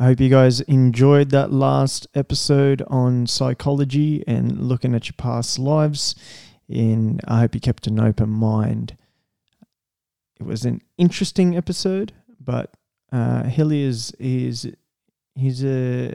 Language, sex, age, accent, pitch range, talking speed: English, male, 20-39, Australian, 115-135 Hz, 130 wpm